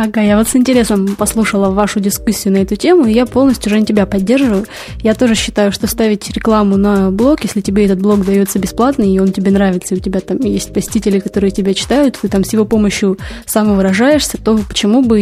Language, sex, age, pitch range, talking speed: Russian, female, 20-39, 200-230 Hz, 210 wpm